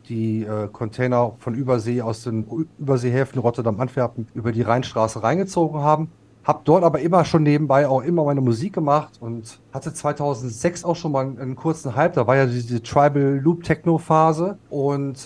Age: 30-49